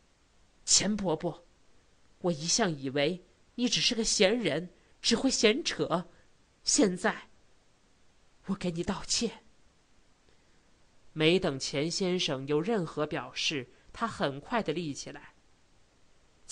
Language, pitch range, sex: Chinese, 145-195 Hz, male